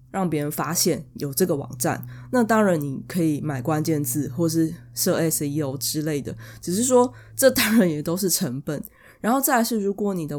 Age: 20-39